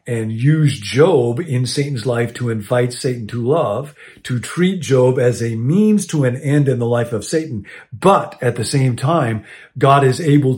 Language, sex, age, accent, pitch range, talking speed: English, male, 50-69, American, 120-140 Hz, 185 wpm